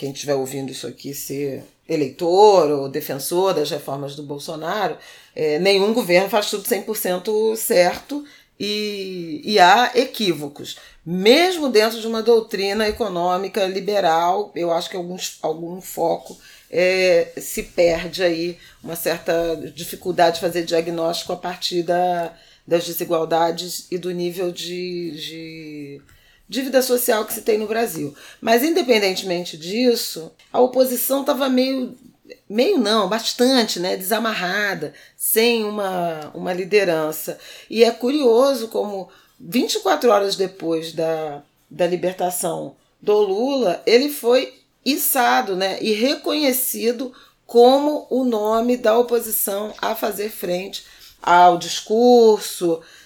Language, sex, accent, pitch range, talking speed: Portuguese, female, Brazilian, 170-235 Hz, 120 wpm